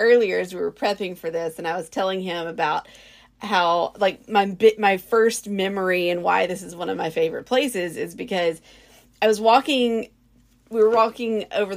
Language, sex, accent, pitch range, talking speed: English, female, American, 175-225 Hz, 195 wpm